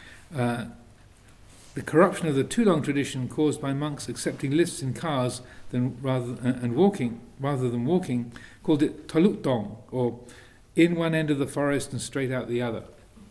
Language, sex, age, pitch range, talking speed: English, male, 50-69, 115-140 Hz, 165 wpm